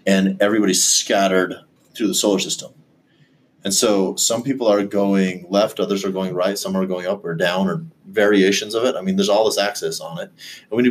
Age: 30-49